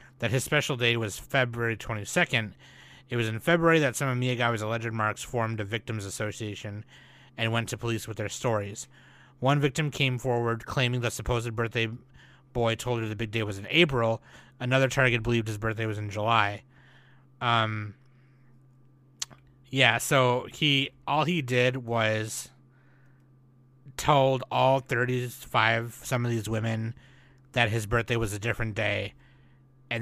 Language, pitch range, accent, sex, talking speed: English, 110-130 Hz, American, male, 150 wpm